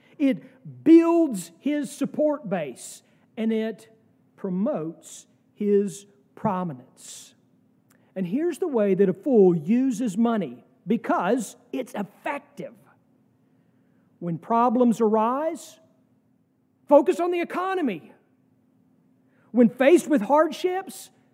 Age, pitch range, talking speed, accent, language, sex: 50-69, 195-290 Hz, 95 wpm, American, English, male